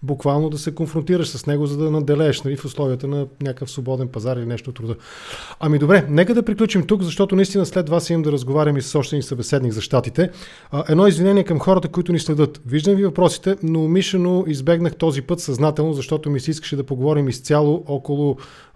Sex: male